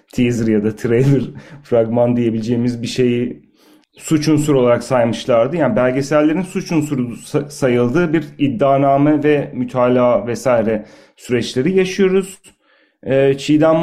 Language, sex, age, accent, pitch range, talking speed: Turkish, male, 40-59, native, 125-150 Hz, 110 wpm